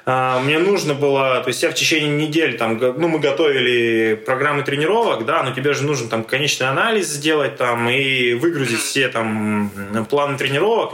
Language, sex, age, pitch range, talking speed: Russian, male, 20-39, 125-170 Hz, 170 wpm